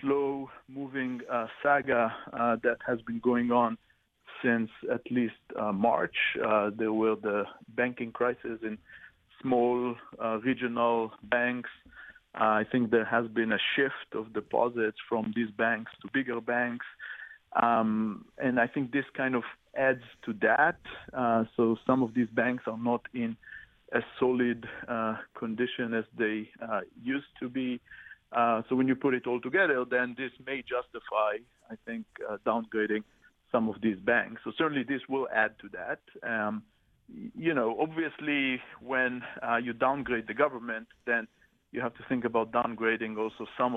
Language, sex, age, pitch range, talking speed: English, male, 40-59, 115-130 Hz, 160 wpm